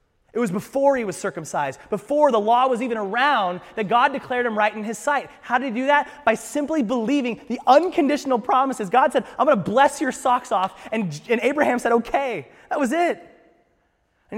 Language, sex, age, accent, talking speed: English, male, 30-49, American, 200 wpm